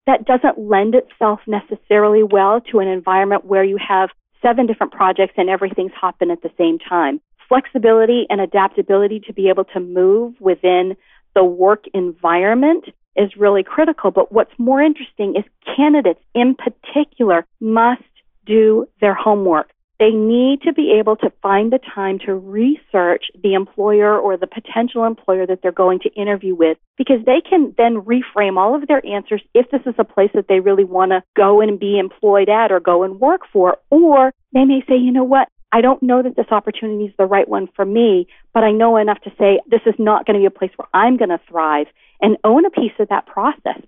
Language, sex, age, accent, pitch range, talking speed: English, female, 40-59, American, 195-245 Hz, 200 wpm